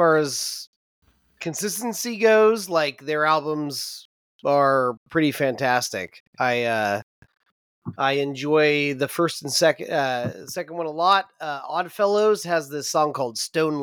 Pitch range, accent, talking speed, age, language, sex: 135-170 Hz, American, 135 wpm, 30-49, English, male